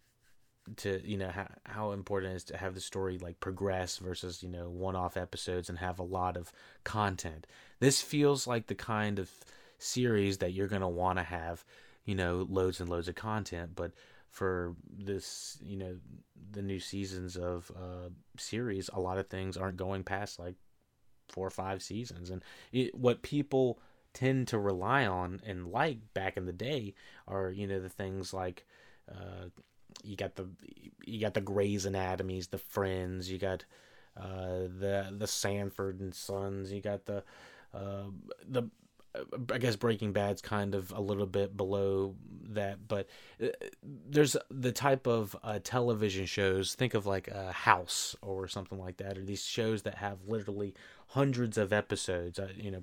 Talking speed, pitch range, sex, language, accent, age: 175 wpm, 95-105 Hz, male, English, American, 30-49